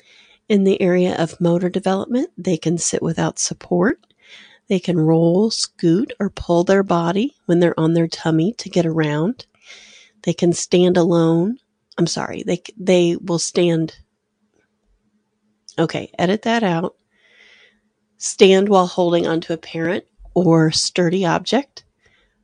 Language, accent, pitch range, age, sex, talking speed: English, American, 170-205 Hz, 40-59, female, 135 wpm